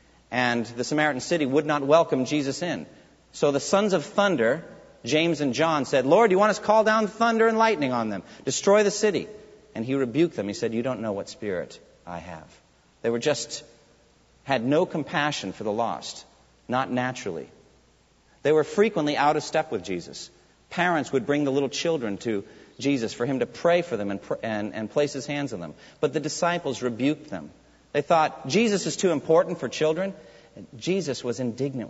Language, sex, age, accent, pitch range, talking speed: English, male, 40-59, American, 120-175 Hz, 200 wpm